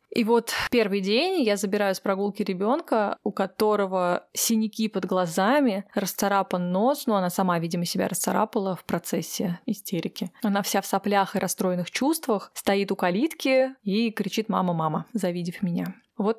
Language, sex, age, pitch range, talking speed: Russian, female, 20-39, 185-225 Hz, 160 wpm